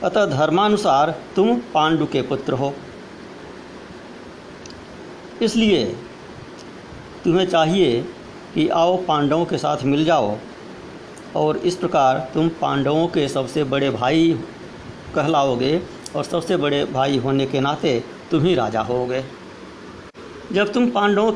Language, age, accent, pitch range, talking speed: Hindi, 60-79, native, 135-170 Hz, 115 wpm